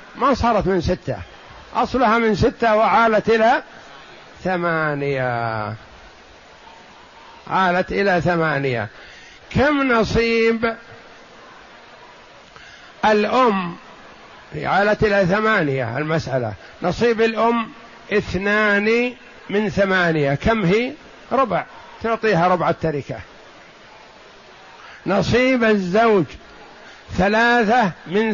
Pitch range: 175-225 Hz